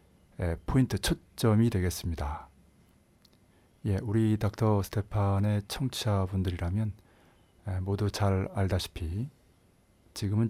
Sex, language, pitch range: male, Korean, 90-105 Hz